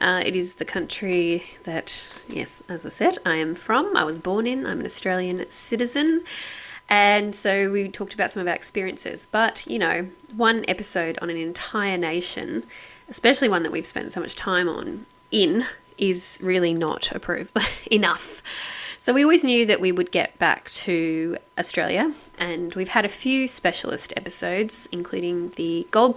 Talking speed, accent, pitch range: 170 wpm, Australian, 175-235 Hz